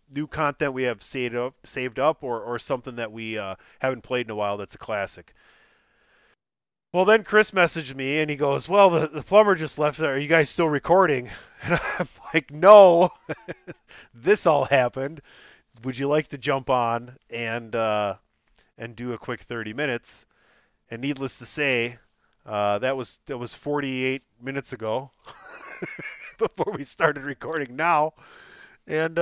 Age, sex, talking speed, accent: 30-49, male, 165 wpm, American